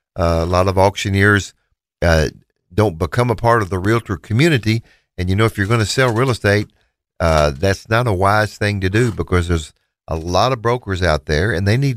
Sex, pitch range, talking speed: male, 90-110 Hz, 215 wpm